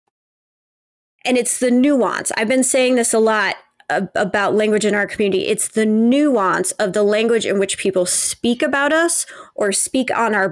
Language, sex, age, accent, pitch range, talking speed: English, female, 30-49, American, 200-235 Hz, 185 wpm